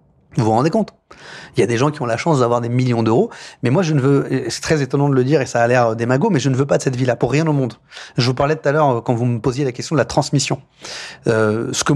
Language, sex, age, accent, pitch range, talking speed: French, male, 30-49, French, 120-145 Hz, 315 wpm